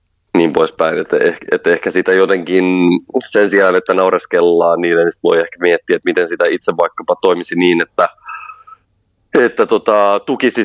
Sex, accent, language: male, native, Finnish